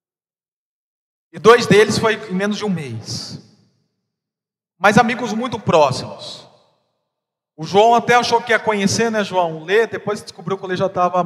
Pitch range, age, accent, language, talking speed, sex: 165-210 Hz, 40-59, Brazilian, Portuguese, 165 wpm, male